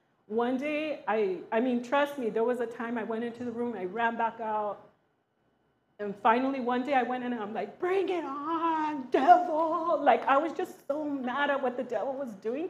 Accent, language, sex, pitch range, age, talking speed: American, English, female, 220-265 Hz, 40-59, 215 wpm